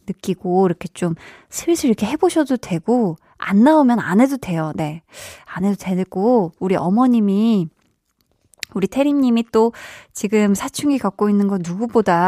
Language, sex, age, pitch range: Korean, female, 20-39, 190-255 Hz